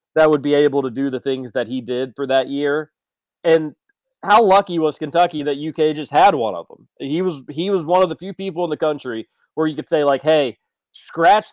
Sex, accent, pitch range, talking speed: male, American, 130-175 Hz, 235 wpm